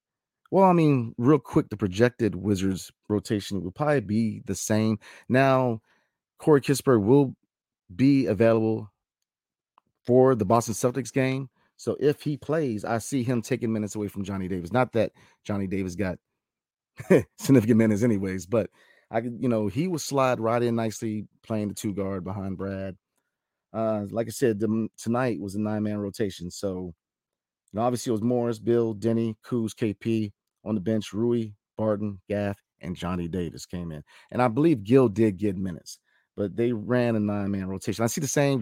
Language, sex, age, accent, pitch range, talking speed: English, male, 30-49, American, 100-125 Hz, 170 wpm